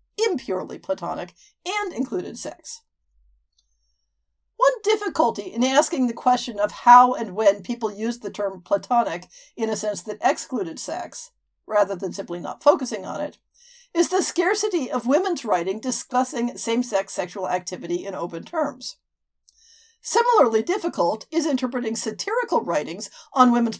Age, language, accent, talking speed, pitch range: 50-69, English, American, 135 wpm, 200-300 Hz